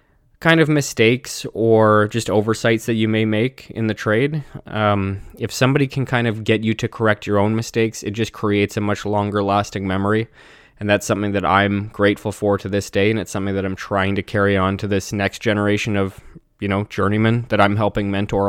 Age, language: 20-39, English